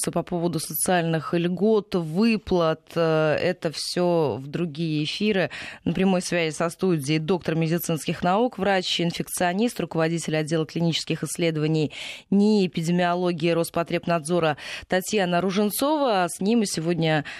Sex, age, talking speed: female, 20-39, 110 wpm